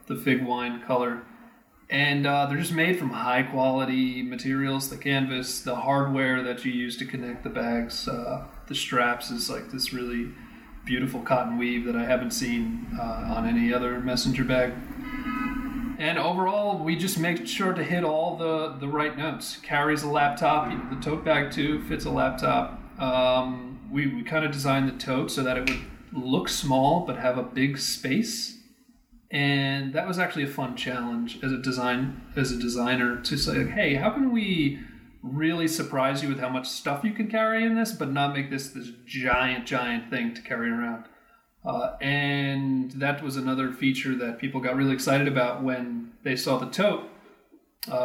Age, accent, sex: 40-59, American, male